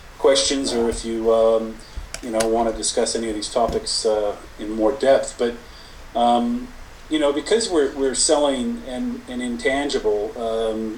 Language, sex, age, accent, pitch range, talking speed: English, male, 40-59, American, 110-135 Hz, 165 wpm